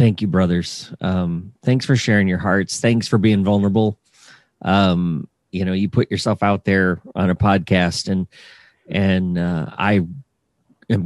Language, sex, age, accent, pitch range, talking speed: English, male, 40-59, American, 90-110 Hz, 150 wpm